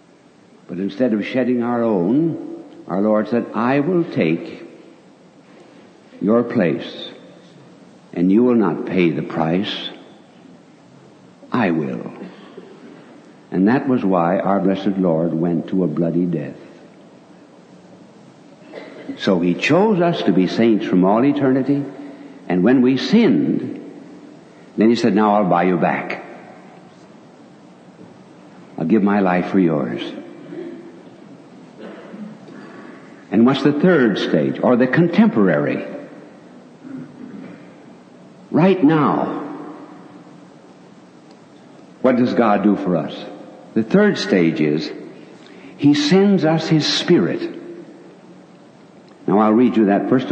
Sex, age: male, 60-79